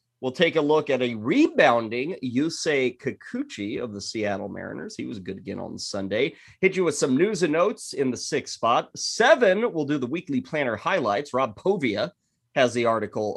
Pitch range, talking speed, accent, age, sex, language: 105-160 Hz, 190 wpm, American, 30-49, male, English